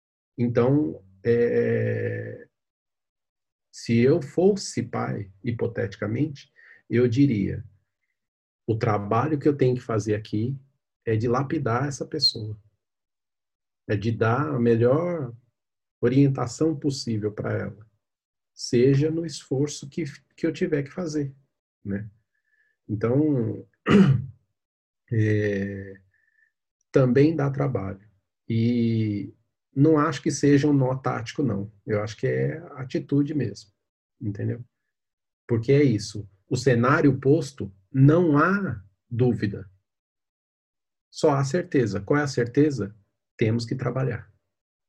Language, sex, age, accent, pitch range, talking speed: Portuguese, male, 40-59, Brazilian, 105-145 Hz, 105 wpm